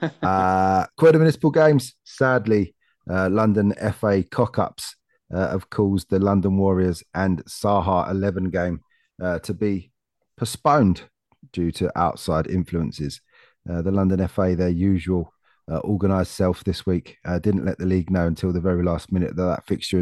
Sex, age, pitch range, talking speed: male, 30-49, 90-100 Hz, 155 wpm